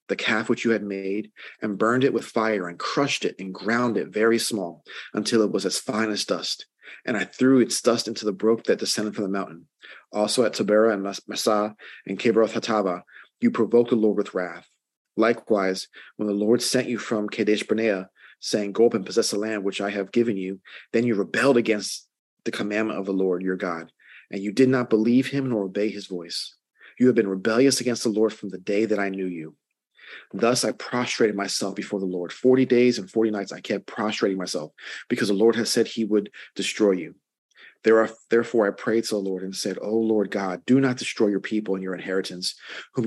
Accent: American